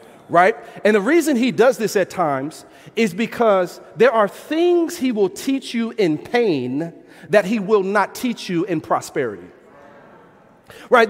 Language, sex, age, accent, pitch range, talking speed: English, male, 40-59, American, 190-270 Hz, 155 wpm